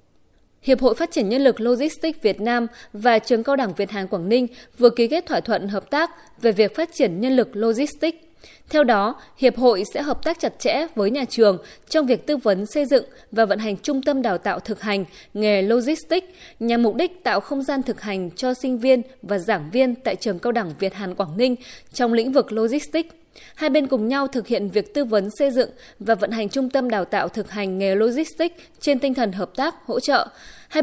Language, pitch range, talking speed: Vietnamese, 205-270 Hz, 225 wpm